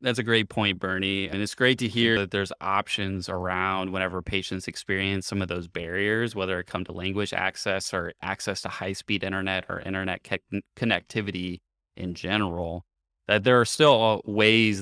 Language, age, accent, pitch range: English, 20-39, American, 95-110 Hz